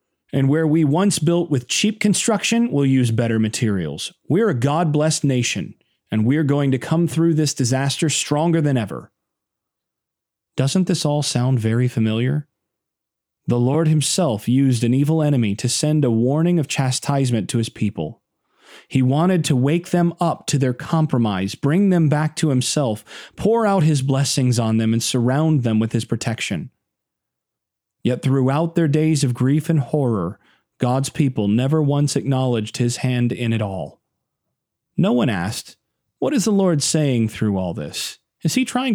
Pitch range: 120-165 Hz